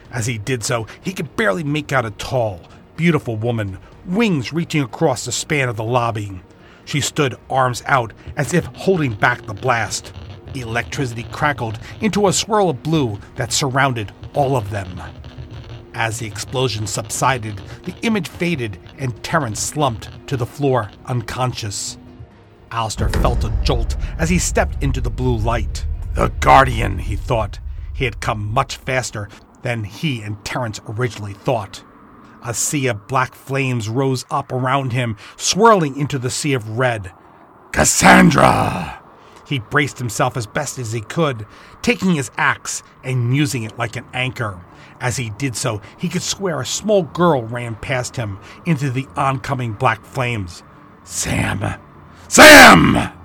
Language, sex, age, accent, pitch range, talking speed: English, male, 40-59, American, 105-140 Hz, 155 wpm